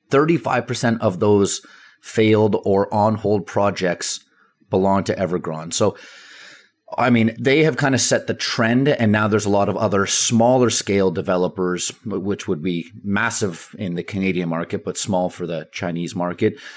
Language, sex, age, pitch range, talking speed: English, male, 30-49, 95-115 Hz, 155 wpm